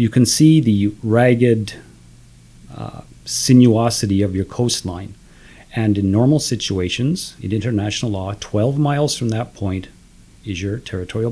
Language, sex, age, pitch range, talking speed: English, male, 40-59, 100-125 Hz, 135 wpm